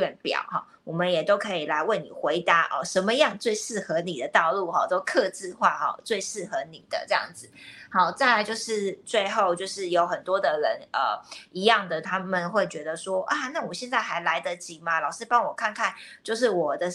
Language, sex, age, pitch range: Chinese, female, 20-39, 180-220 Hz